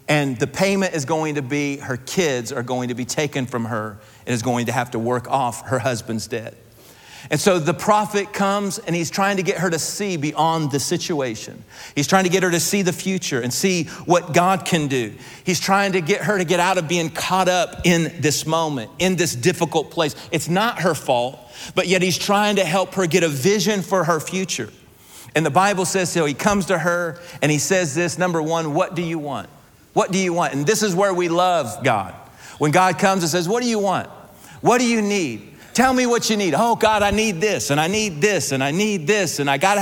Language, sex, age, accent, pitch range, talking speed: English, male, 40-59, American, 145-195 Hz, 240 wpm